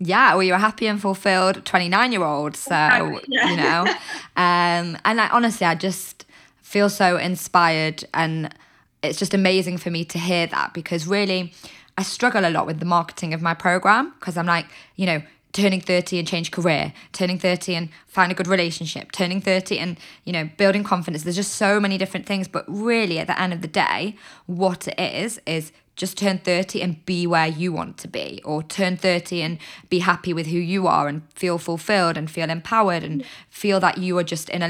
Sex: female